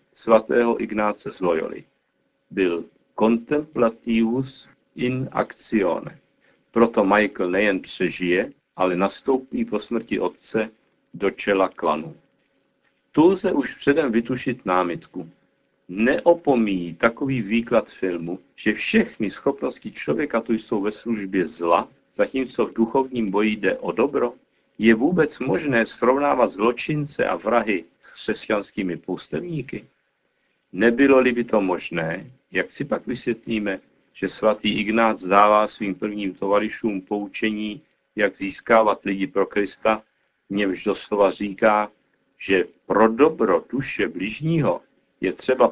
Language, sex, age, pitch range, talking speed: Czech, male, 50-69, 105-130 Hz, 115 wpm